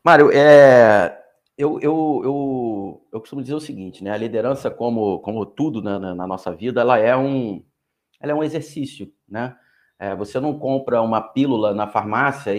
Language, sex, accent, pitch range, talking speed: Portuguese, male, Brazilian, 115-145 Hz, 145 wpm